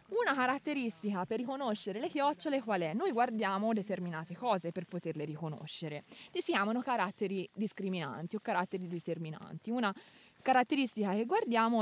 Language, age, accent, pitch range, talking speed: Italian, 20-39, native, 195-270 Hz, 135 wpm